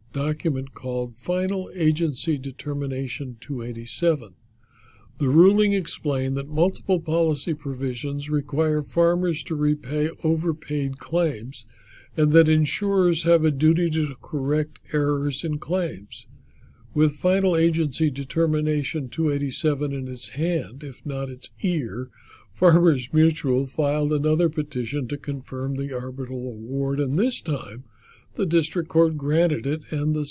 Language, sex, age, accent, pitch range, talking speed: English, male, 60-79, American, 130-160 Hz, 125 wpm